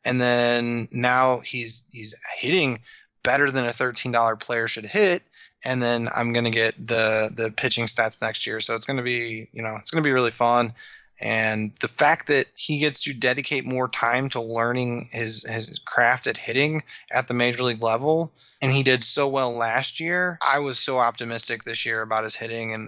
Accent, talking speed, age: American, 195 wpm, 20-39